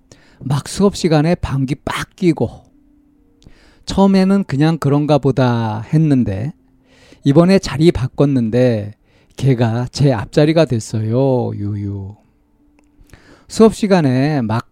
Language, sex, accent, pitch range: Korean, male, native, 110-165 Hz